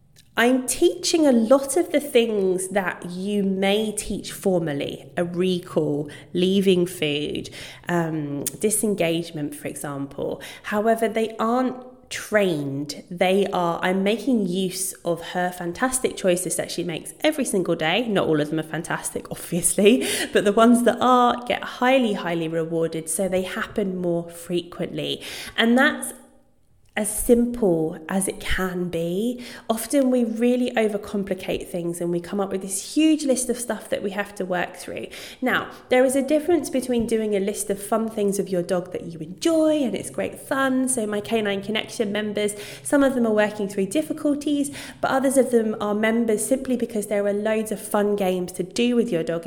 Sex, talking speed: female, 170 wpm